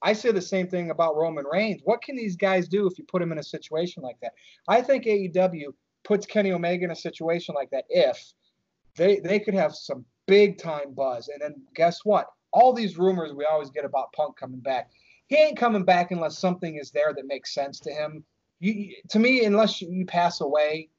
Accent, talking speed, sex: American, 215 wpm, male